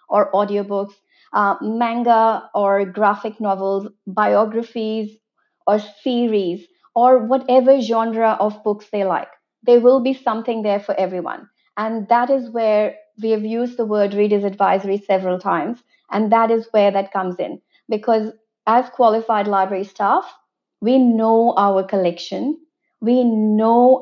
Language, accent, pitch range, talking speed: English, Indian, 200-235 Hz, 135 wpm